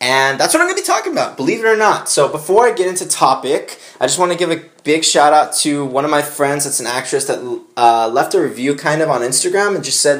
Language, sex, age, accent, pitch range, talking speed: English, male, 20-39, American, 135-180 Hz, 280 wpm